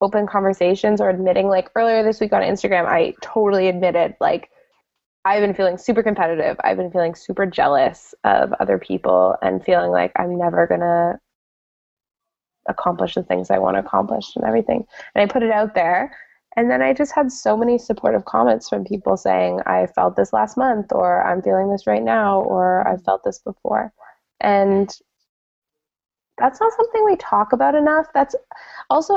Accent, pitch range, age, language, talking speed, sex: American, 175-235 Hz, 10-29, English, 180 wpm, female